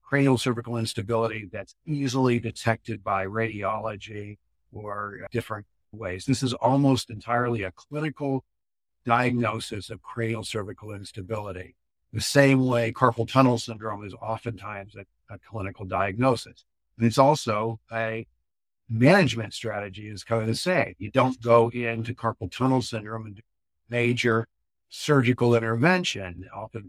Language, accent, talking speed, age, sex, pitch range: English, American, 130 wpm, 50-69, male, 100-120 Hz